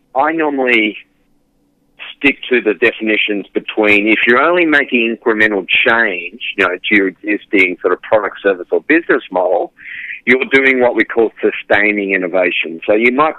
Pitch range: 95-125 Hz